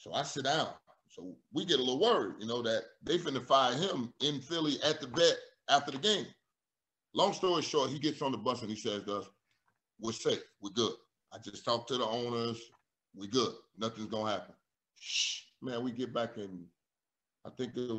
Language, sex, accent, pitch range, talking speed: English, male, American, 110-160 Hz, 210 wpm